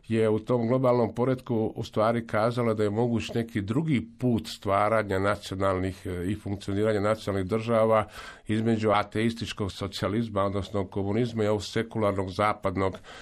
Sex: male